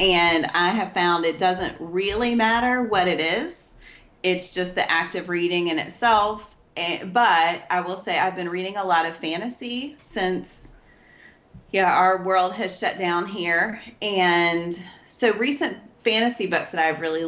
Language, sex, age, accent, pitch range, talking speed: English, female, 30-49, American, 165-195 Hz, 160 wpm